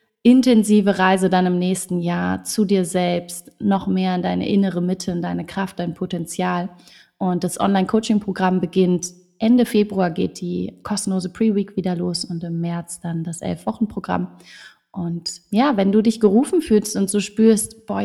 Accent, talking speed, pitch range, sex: German, 165 wpm, 180-205 Hz, female